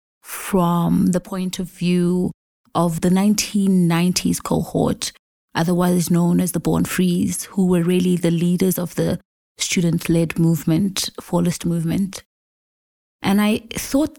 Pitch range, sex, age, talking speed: 175-190 Hz, female, 20-39, 125 wpm